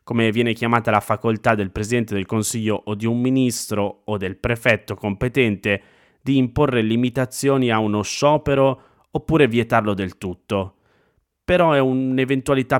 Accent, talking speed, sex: native, 140 wpm, male